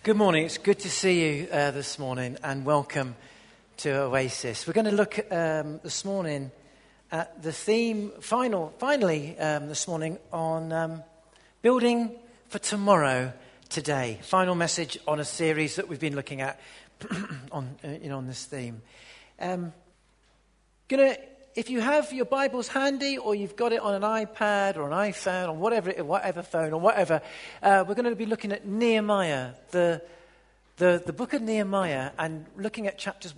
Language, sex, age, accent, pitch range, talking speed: English, male, 50-69, British, 150-215 Hz, 175 wpm